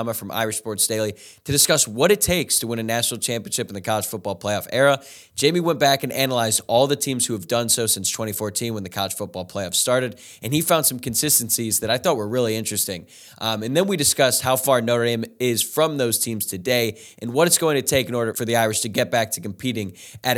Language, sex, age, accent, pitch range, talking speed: English, male, 20-39, American, 110-135 Hz, 240 wpm